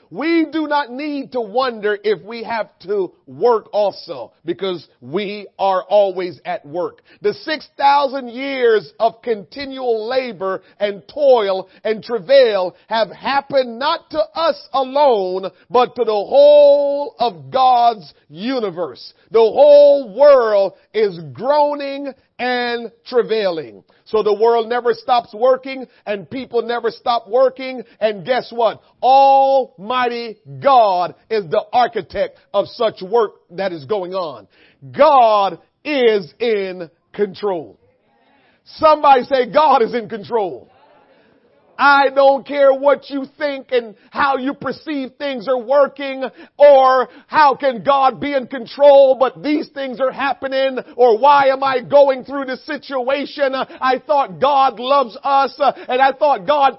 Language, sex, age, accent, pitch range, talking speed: English, male, 40-59, American, 230-285 Hz, 135 wpm